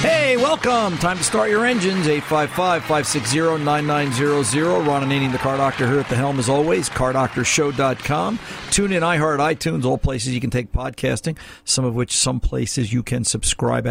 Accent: American